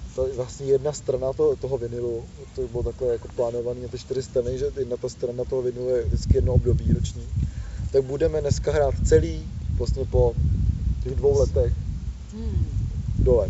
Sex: male